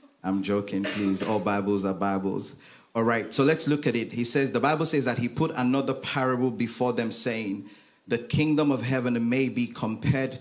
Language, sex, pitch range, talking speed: English, male, 110-130 Hz, 195 wpm